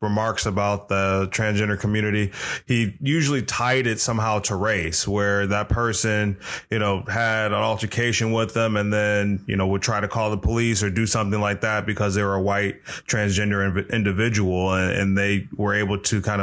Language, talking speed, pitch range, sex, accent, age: English, 185 wpm, 95-105 Hz, male, American, 20-39